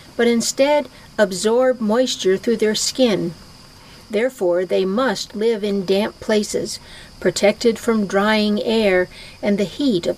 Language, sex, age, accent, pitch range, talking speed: English, female, 60-79, American, 185-240 Hz, 130 wpm